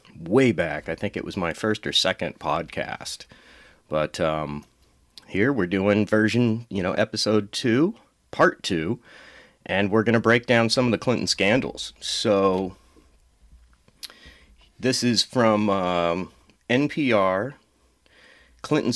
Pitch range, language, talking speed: 85-120 Hz, English, 130 wpm